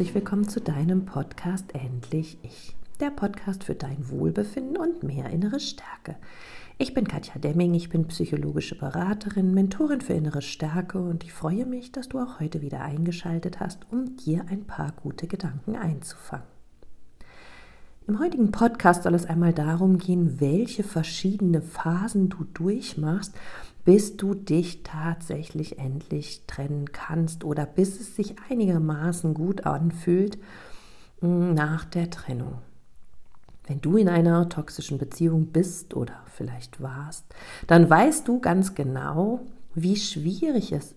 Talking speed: 135 wpm